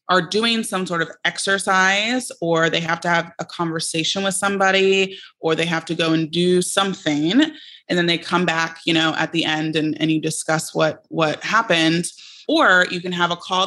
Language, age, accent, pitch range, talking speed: English, 20-39, American, 160-185 Hz, 200 wpm